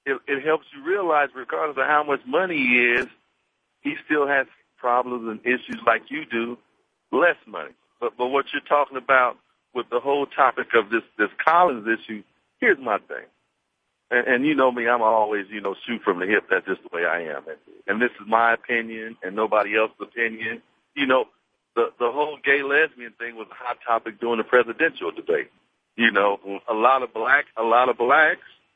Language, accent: English, American